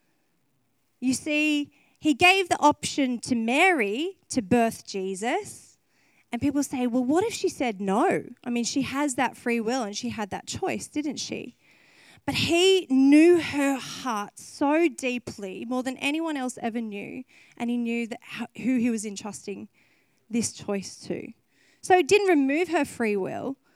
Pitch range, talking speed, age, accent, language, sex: 210-280 Hz, 160 wpm, 30-49, Australian, English, female